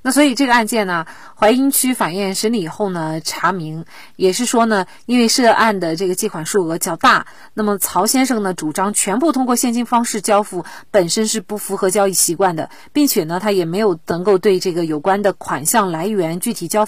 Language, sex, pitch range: Chinese, female, 175-225 Hz